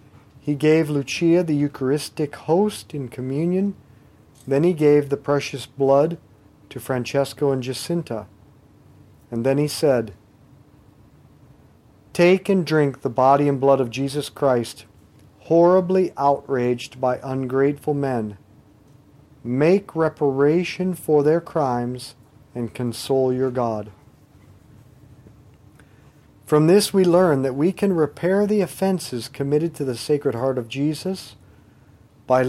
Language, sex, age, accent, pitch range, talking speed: English, male, 40-59, American, 125-155 Hz, 120 wpm